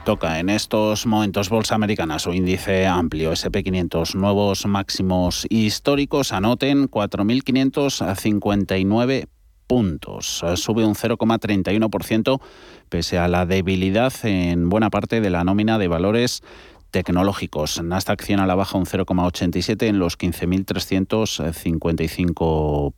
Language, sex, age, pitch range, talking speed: Spanish, male, 30-49, 90-110 Hz, 110 wpm